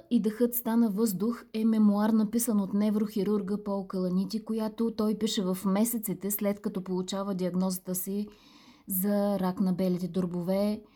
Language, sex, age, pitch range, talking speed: Bulgarian, female, 20-39, 200-235 Hz, 140 wpm